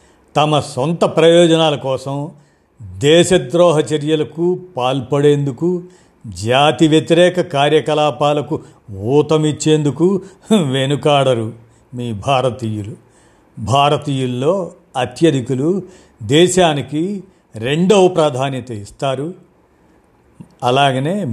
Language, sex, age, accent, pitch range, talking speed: Telugu, male, 50-69, native, 120-155 Hz, 60 wpm